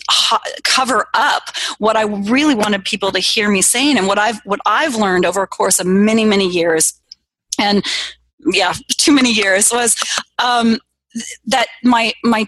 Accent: American